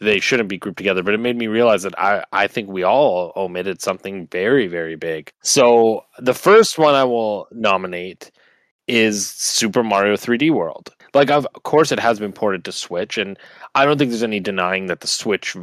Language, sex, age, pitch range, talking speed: English, male, 20-39, 95-120 Hz, 205 wpm